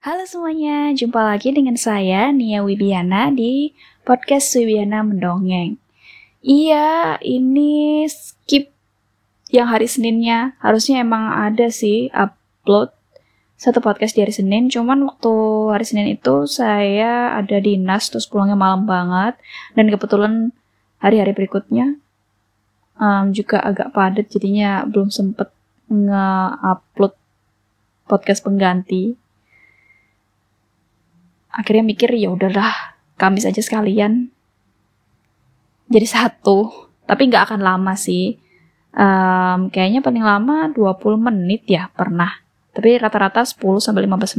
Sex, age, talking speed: female, 10-29, 105 wpm